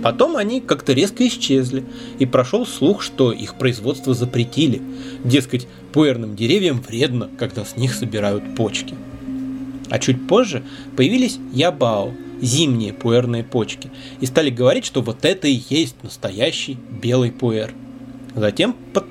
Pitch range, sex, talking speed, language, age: 120-140 Hz, male, 130 wpm, Russian, 20-39